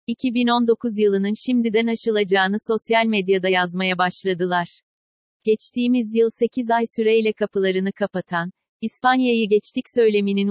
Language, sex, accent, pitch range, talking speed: Turkish, female, native, 195-230 Hz, 105 wpm